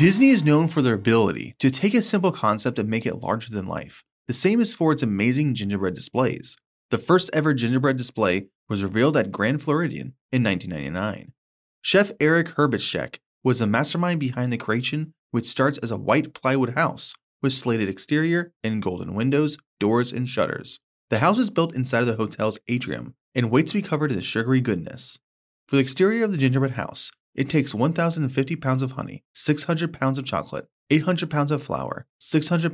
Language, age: English, 20-39